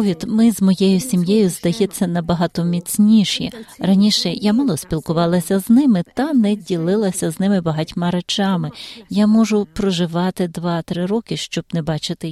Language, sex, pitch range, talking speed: Ukrainian, female, 165-210 Hz, 140 wpm